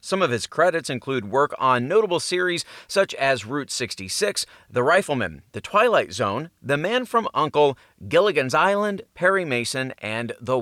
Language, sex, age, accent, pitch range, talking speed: English, male, 30-49, American, 130-185 Hz, 160 wpm